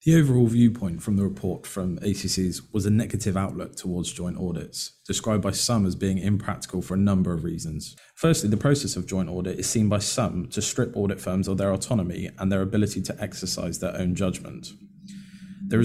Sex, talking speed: male, 195 wpm